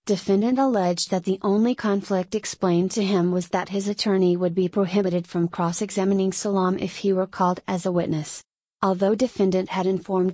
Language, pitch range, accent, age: English, 180-200 Hz, American, 30-49